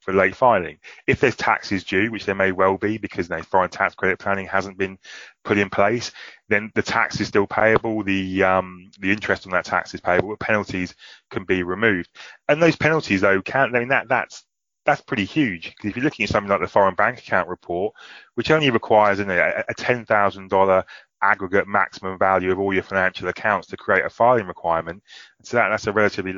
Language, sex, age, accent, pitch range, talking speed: English, male, 20-39, British, 95-105 Hz, 220 wpm